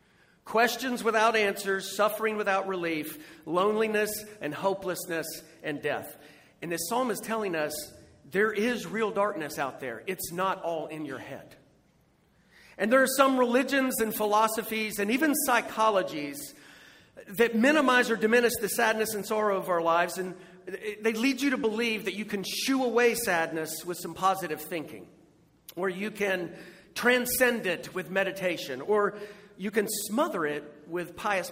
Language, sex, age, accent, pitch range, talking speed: English, male, 40-59, American, 175-225 Hz, 150 wpm